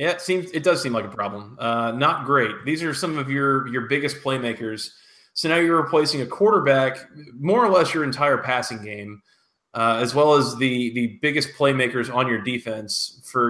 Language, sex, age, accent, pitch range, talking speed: English, male, 20-39, American, 115-145 Hz, 200 wpm